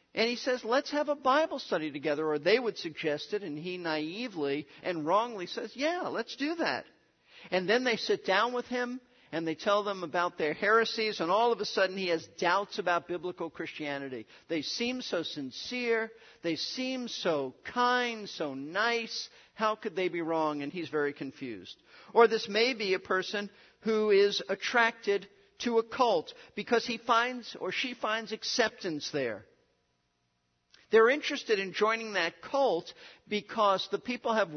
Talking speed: 170 wpm